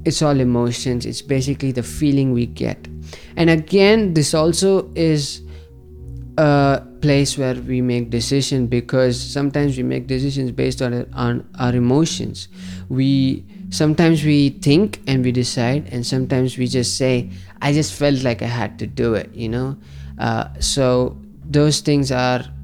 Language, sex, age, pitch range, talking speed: English, male, 20-39, 115-140 Hz, 155 wpm